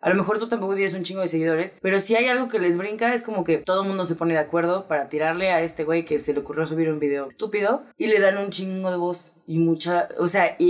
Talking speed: 290 wpm